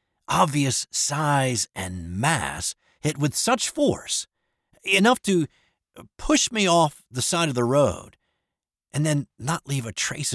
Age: 50-69